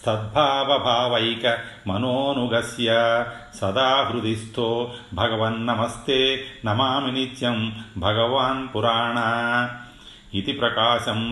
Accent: native